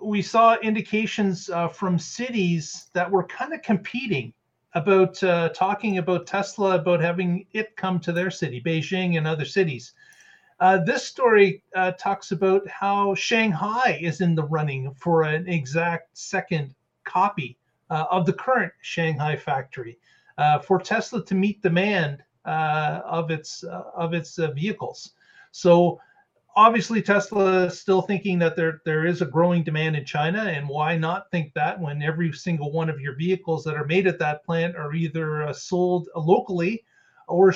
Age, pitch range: 40-59, 160-195 Hz